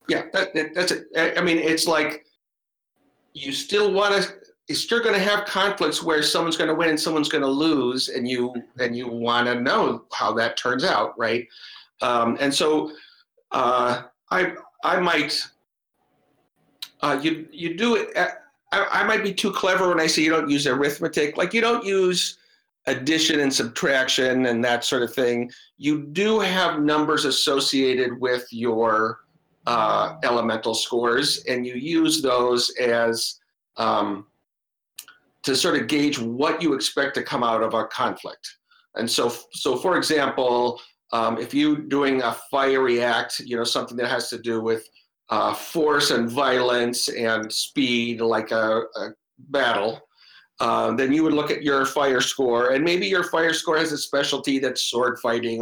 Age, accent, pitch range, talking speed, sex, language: 50-69, American, 120-165 Hz, 175 wpm, male, English